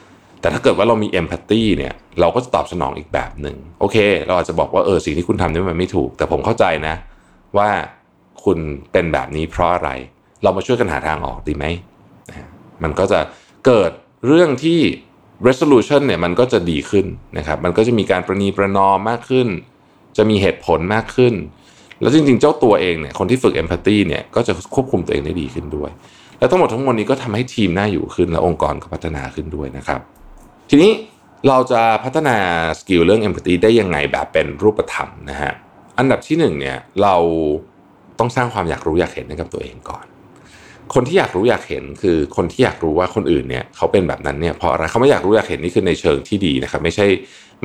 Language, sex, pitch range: Thai, male, 80-115 Hz